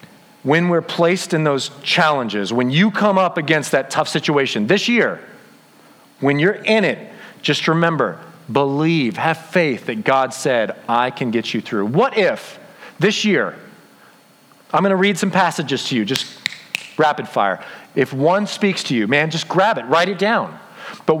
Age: 40-59